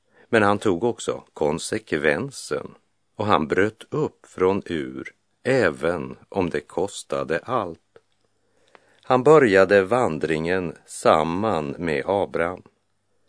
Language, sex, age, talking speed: Portuguese, male, 50-69, 100 wpm